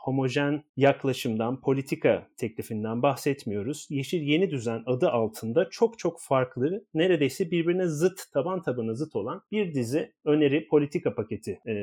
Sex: male